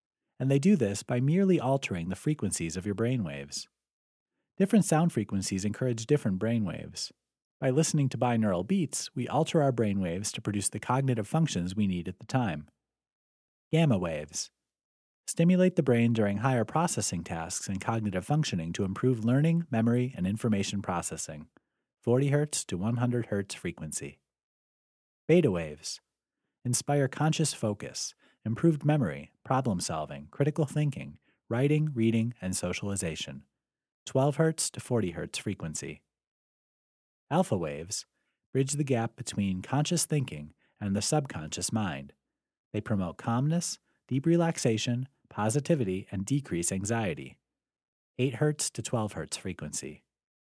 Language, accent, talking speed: English, American, 135 wpm